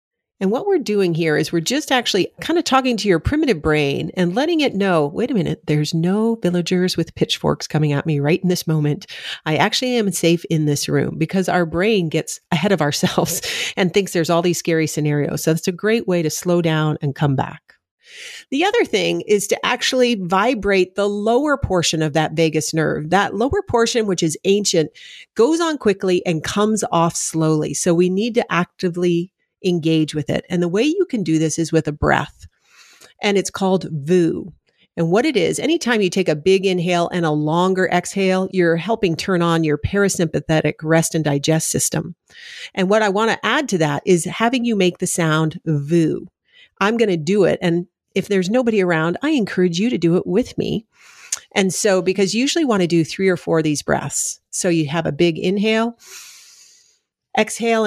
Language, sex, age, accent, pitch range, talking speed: English, female, 40-59, American, 165-215 Hz, 200 wpm